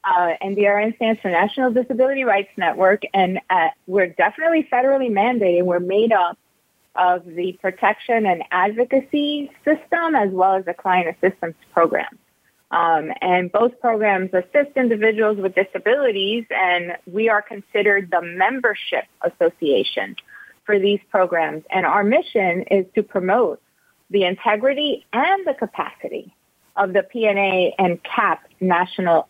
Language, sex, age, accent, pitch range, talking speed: English, female, 30-49, American, 185-240 Hz, 135 wpm